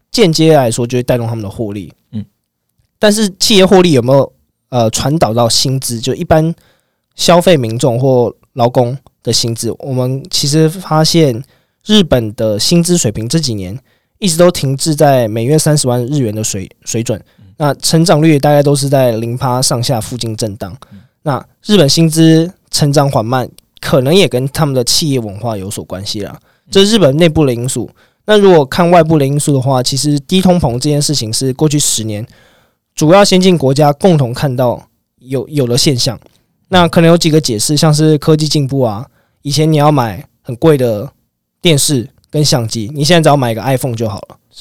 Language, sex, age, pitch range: Chinese, male, 20-39, 115-155 Hz